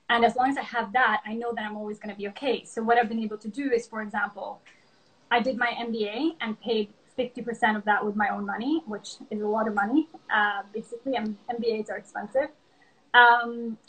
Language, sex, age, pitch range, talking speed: English, female, 20-39, 215-240 Hz, 215 wpm